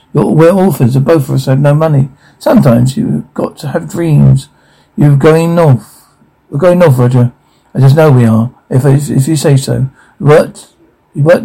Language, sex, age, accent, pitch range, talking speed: English, male, 60-79, British, 130-160 Hz, 190 wpm